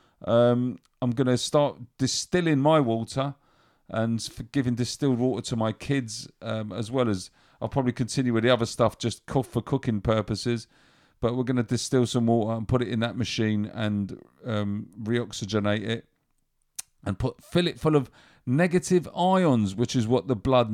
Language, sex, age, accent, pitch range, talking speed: English, male, 40-59, British, 110-140 Hz, 170 wpm